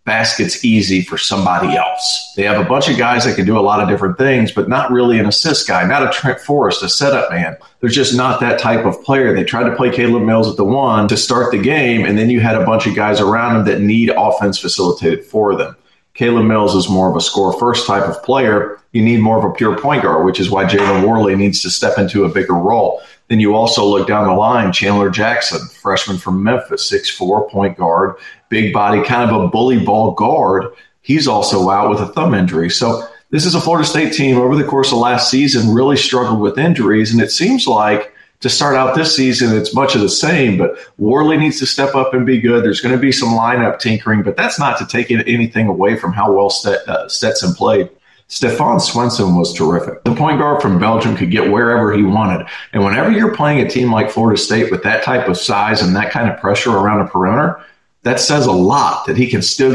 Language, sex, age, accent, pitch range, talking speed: English, male, 40-59, American, 105-130 Hz, 235 wpm